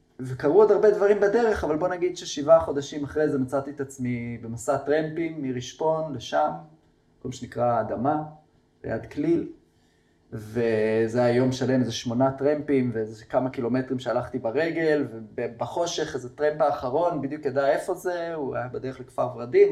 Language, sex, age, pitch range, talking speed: Hebrew, male, 20-39, 125-150 Hz, 145 wpm